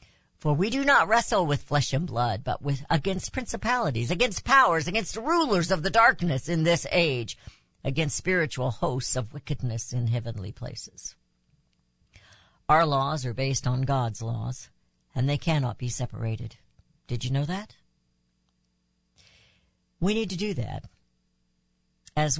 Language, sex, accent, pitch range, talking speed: English, female, American, 125-205 Hz, 140 wpm